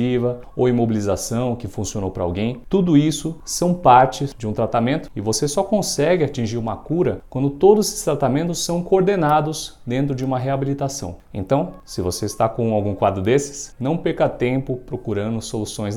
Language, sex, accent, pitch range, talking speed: Portuguese, male, Brazilian, 110-145 Hz, 160 wpm